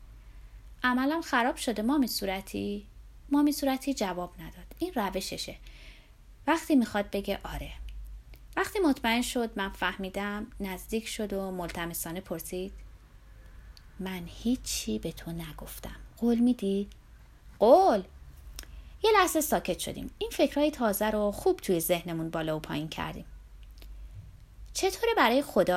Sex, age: female, 30-49